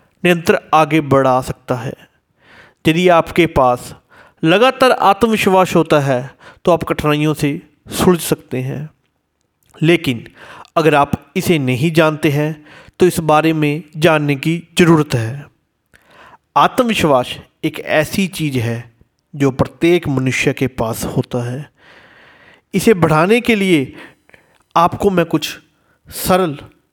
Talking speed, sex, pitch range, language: 120 wpm, male, 130-175 Hz, Hindi